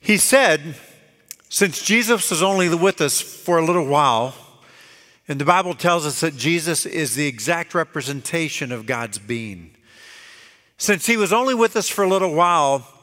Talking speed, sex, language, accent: 165 wpm, male, English, American